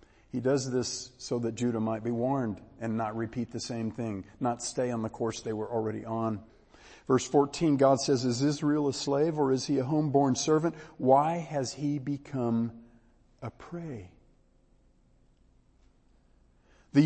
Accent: American